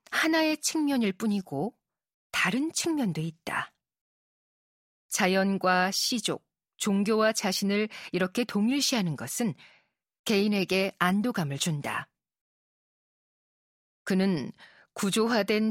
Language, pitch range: Korean, 185-230 Hz